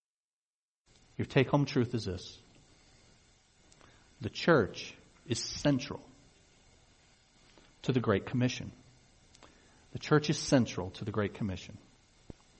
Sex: male